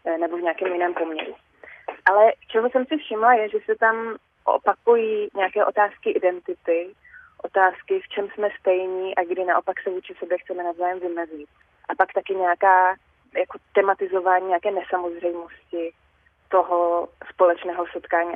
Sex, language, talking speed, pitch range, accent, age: female, Czech, 140 wpm, 185-215 Hz, native, 20-39